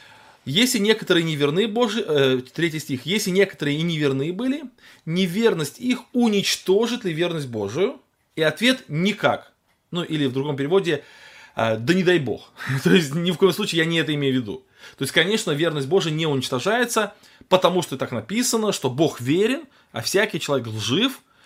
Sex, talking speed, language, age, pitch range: male, 170 wpm, Russian, 20-39, 135-190 Hz